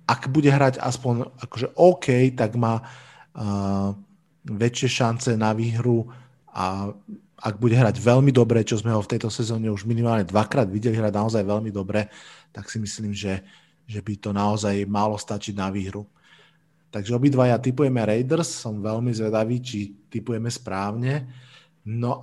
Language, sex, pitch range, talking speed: Slovak, male, 110-135 Hz, 155 wpm